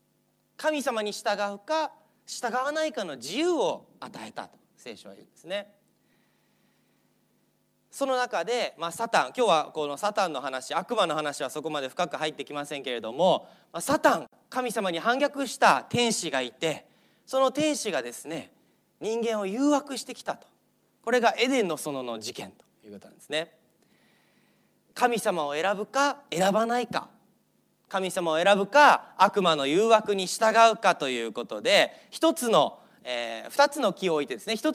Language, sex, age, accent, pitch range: Japanese, male, 30-49, native, 170-255 Hz